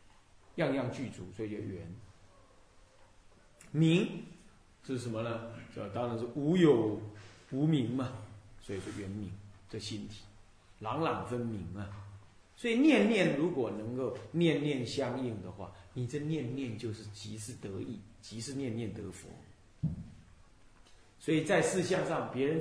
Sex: male